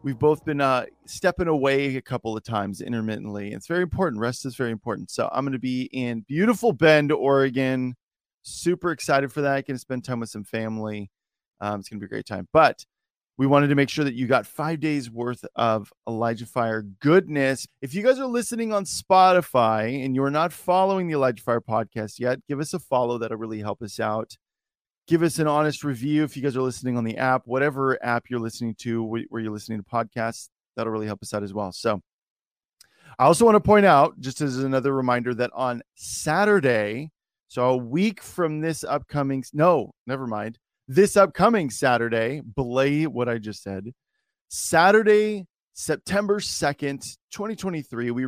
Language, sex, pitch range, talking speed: English, male, 115-155 Hz, 190 wpm